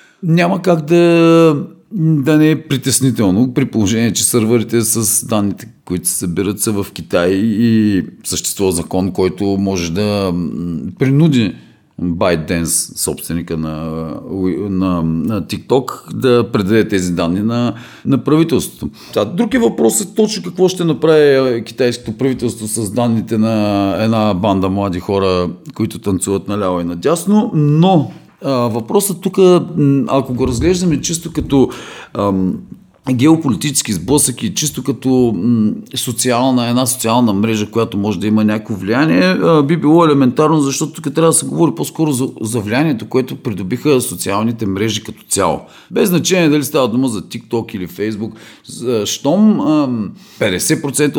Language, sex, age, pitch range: Bulgarian, male, 40-59, 100-150 Hz